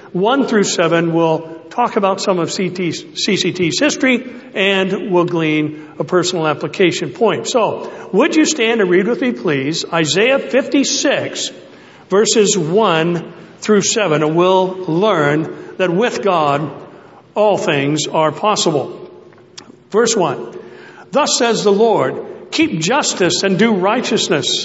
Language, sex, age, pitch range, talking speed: English, male, 60-79, 180-240 Hz, 130 wpm